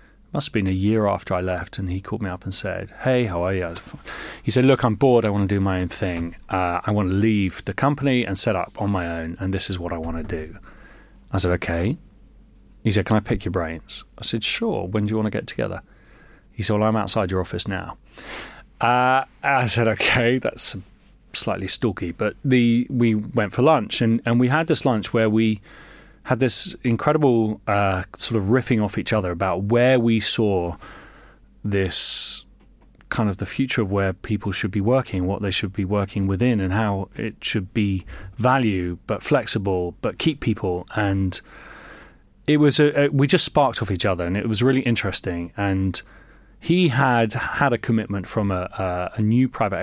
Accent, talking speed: British, 205 wpm